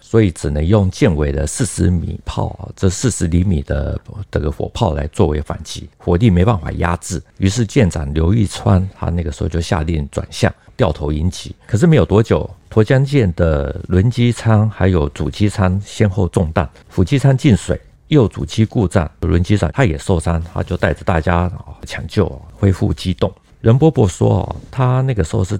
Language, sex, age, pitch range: Chinese, male, 50-69, 85-105 Hz